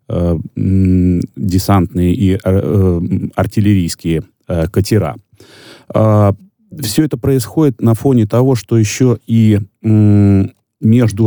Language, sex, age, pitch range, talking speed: Russian, male, 30-49, 90-110 Hz, 75 wpm